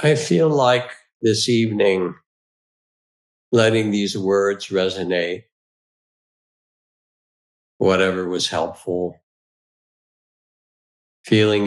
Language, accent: English, American